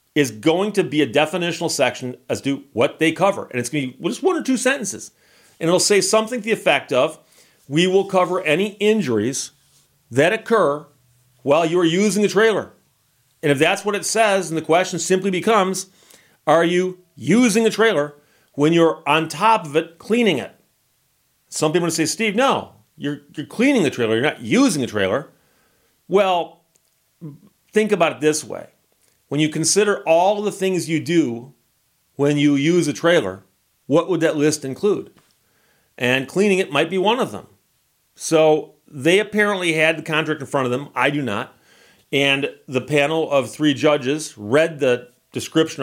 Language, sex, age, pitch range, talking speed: English, male, 40-59, 140-190 Hz, 180 wpm